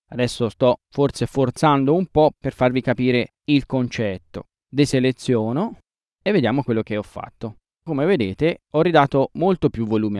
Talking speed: 145 wpm